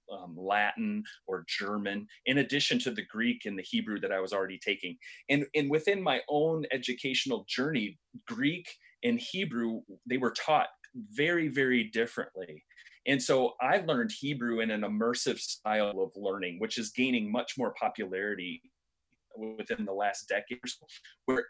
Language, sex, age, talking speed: English, male, 30-49, 160 wpm